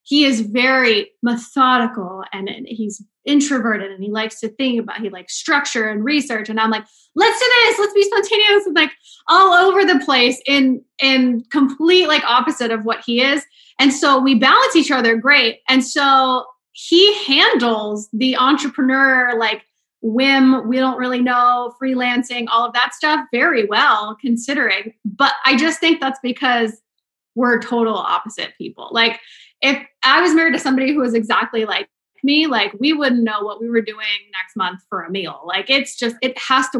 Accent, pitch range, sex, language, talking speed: American, 225-275 Hz, female, English, 180 wpm